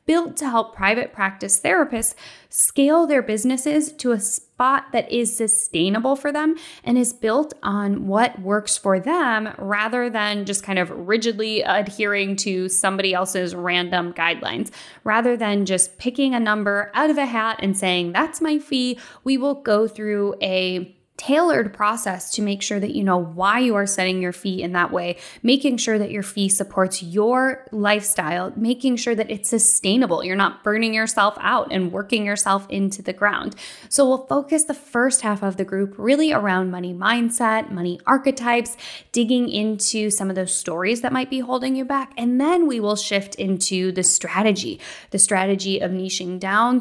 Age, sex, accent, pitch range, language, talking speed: 10-29, female, American, 195-250 Hz, English, 175 wpm